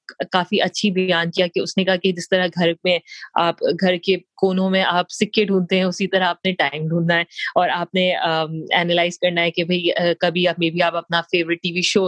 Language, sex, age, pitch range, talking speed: Urdu, female, 30-49, 170-195 Hz, 160 wpm